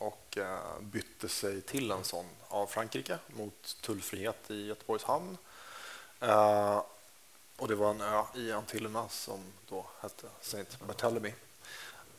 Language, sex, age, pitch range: English, male, 30-49, 100-115 Hz